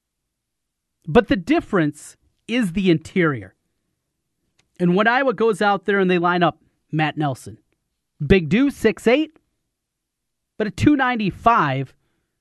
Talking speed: 115 wpm